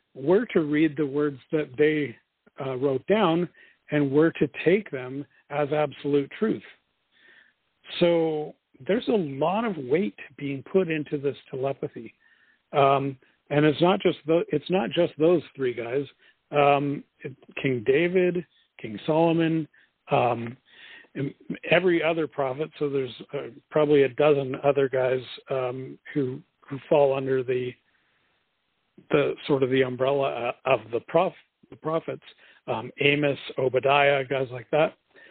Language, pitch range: English, 135-160 Hz